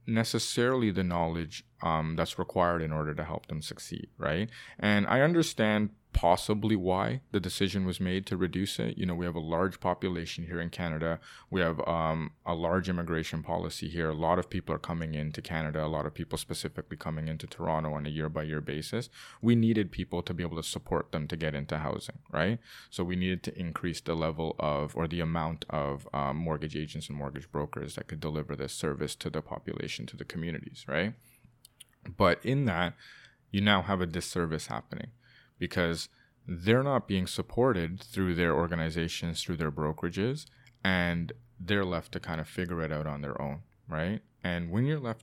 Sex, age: male, 20-39